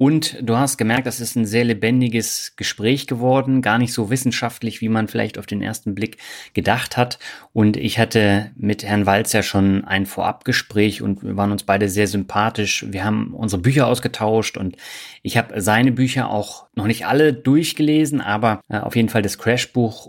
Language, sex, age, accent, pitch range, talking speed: German, male, 30-49, German, 100-120 Hz, 185 wpm